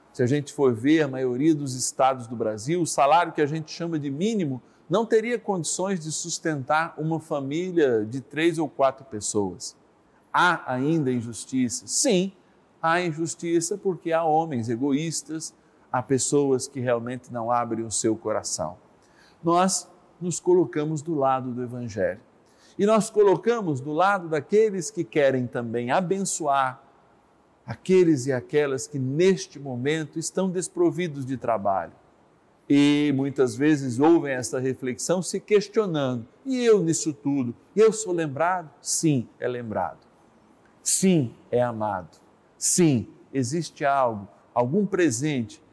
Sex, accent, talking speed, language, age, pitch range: male, Brazilian, 135 wpm, Portuguese, 50-69, 130-170 Hz